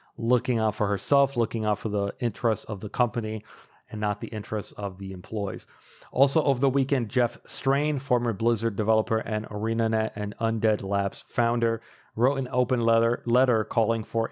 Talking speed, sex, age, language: 170 wpm, male, 40-59, English